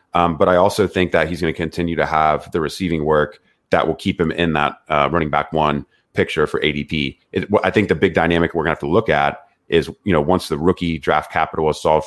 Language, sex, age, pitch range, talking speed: English, male, 30-49, 75-90 Hz, 255 wpm